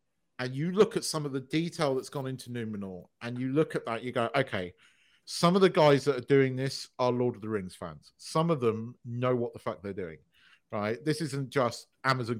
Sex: male